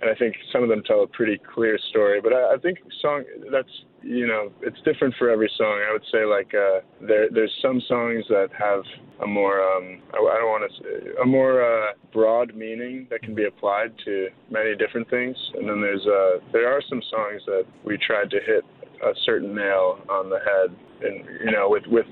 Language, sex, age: English, male, 20-39